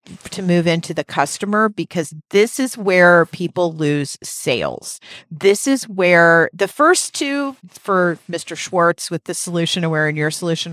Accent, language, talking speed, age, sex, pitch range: American, English, 155 wpm, 40-59, female, 155-205 Hz